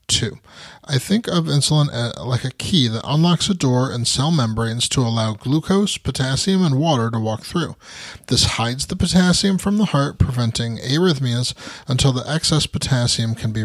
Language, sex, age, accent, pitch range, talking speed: English, male, 30-49, American, 120-160 Hz, 170 wpm